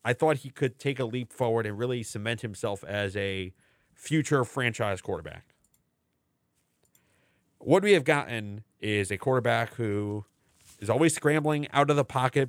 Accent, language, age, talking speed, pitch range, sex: American, English, 30-49, 155 wpm, 115-155 Hz, male